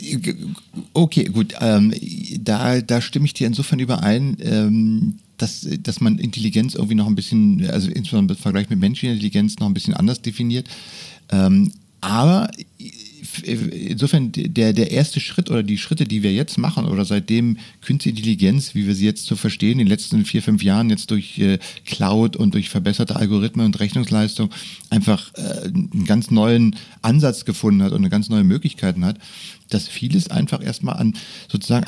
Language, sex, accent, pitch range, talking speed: German, male, German, 105-160 Hz, 175 wpm